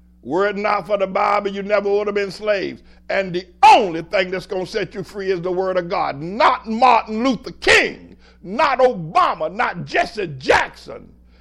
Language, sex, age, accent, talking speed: English, male, 60-79, American, 190 wpm